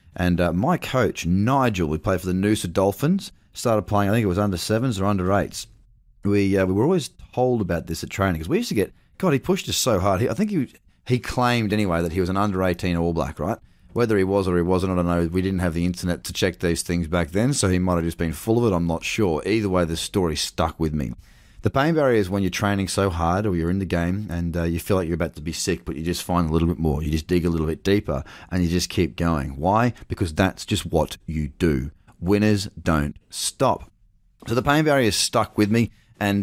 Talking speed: 265 wpm